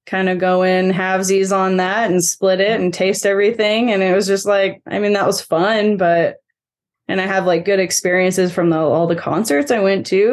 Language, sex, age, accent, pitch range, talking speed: English, female, 20-39, American, 170-200 Hz, 215 wpm